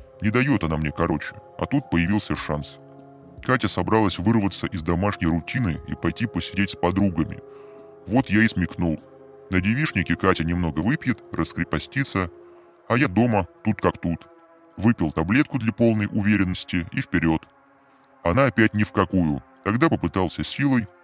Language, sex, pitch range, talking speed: Russian, female, 85-115 Hz, 145 wpm